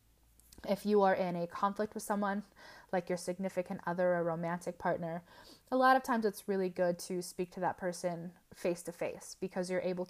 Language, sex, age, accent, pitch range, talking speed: English, female, 20-39, American, 180-215 Hz, 195 wpm